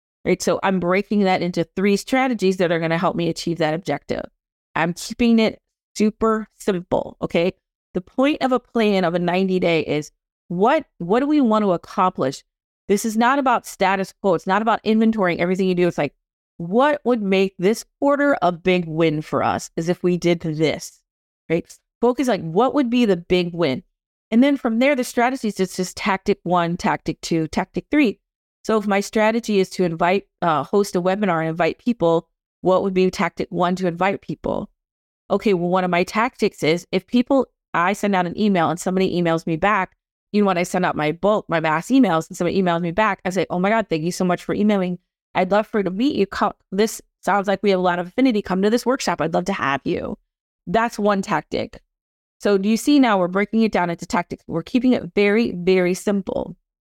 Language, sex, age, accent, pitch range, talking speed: English, female, 40-59, American, 175-220 Hz, 215 wpm